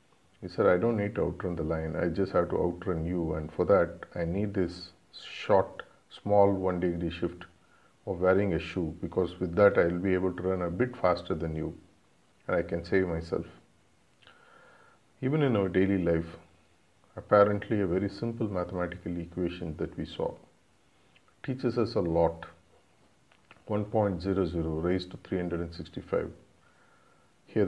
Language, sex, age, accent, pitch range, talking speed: English, male, 50-69, Indian, 85-100 Hz, 155 wpm